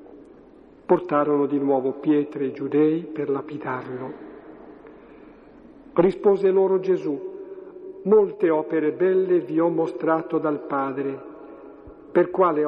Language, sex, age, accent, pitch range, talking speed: Italian, male, 50-69, native, 150-200 Hz, 100 wpm